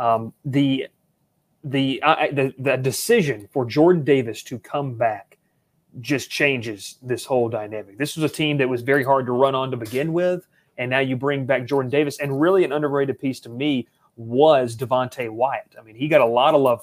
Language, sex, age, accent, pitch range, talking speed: English, male, 30-49, American, 125-155 Hz, 205 wpm